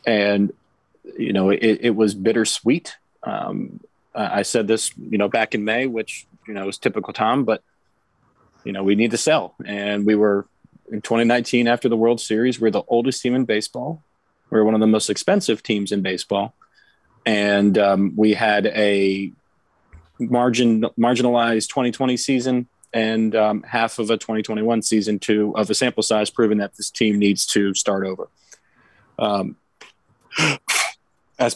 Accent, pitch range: American, 105-125 Hz